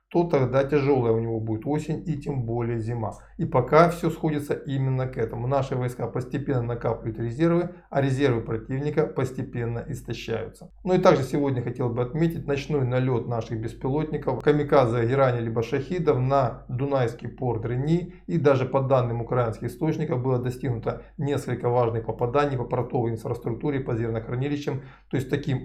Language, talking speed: Russian, 155 wpm